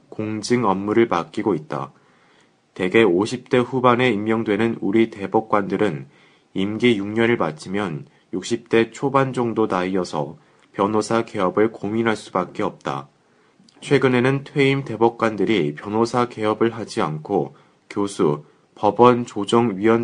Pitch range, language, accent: 105-120 Hz, Korean, native